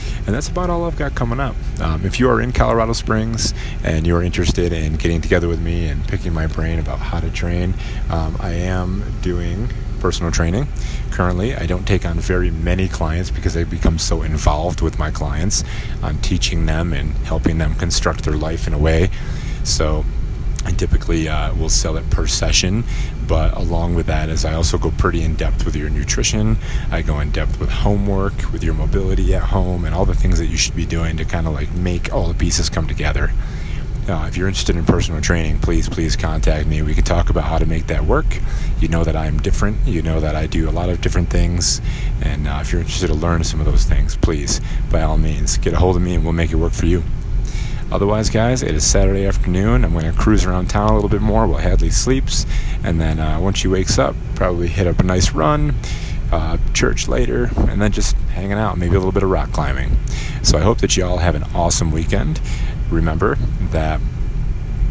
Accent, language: American, English